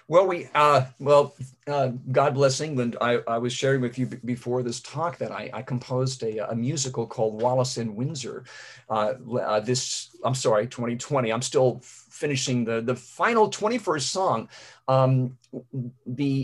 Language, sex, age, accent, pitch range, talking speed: English, male, 50-69, American, 115-135 Hz, 170 wpm